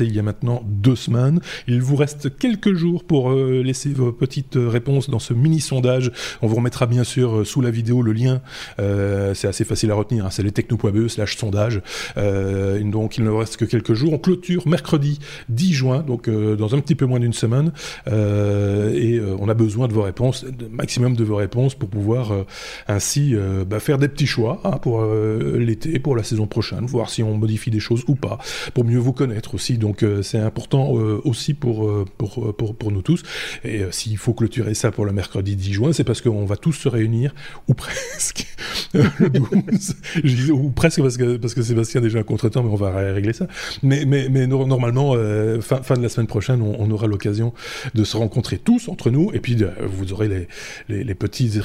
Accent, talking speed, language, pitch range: French, 230 wpm, French, 110-135 Hz